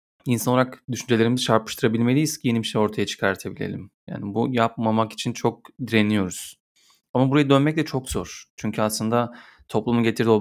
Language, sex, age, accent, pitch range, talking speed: Turkish, male, 30-49, native, 100-125 Hz, 155 wpm